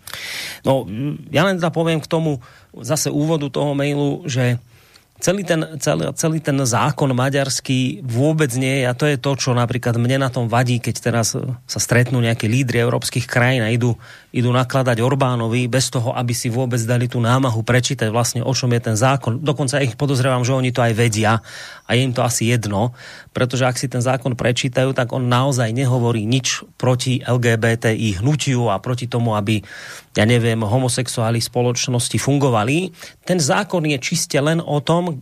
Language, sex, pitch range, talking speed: Slovak, male, 120-145 Hz, 175 wpm